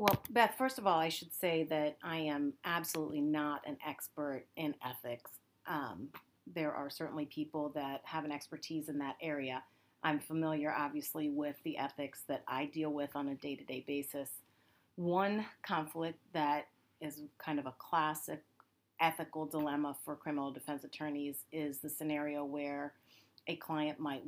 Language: English